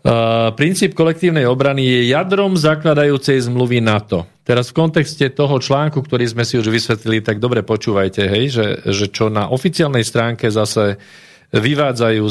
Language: Slovak